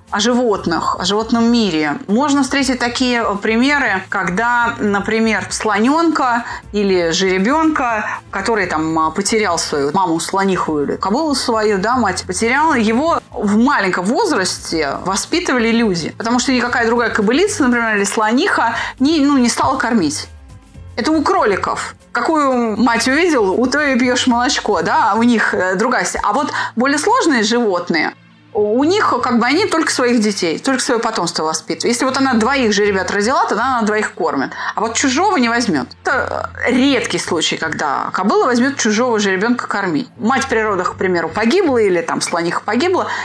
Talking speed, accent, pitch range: 155 wpm, native, 210-270 Hz